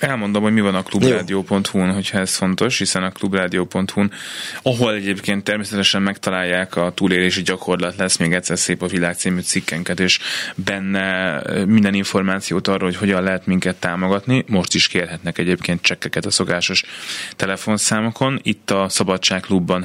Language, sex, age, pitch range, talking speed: Hungarian, male, 20-39, 90-100 Hz, 145 wpm